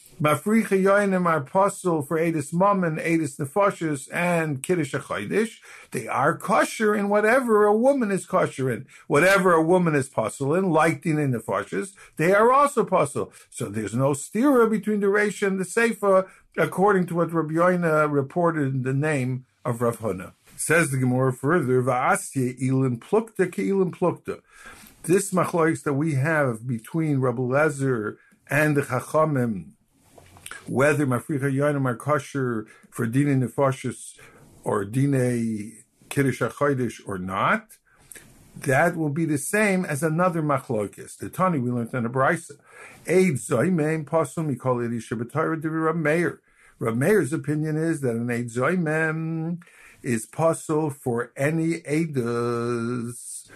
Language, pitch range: English, 125-170 Hz